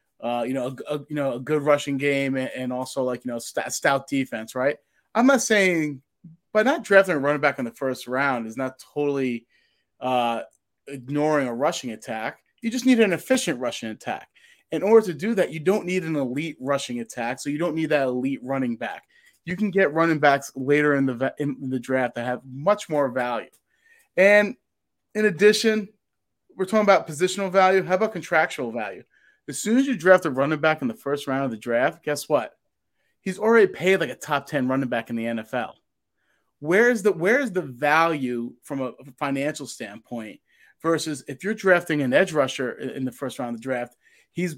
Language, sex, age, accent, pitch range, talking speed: English, male, 30-49, American, 130-185 Hz, 200 wpm